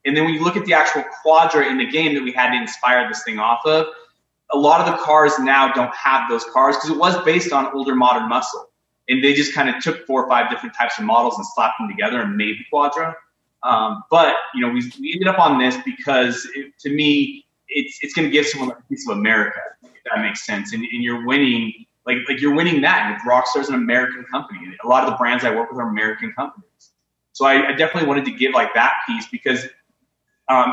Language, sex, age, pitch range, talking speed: English, male, 20-39, 125-155 Hz, 250 wpm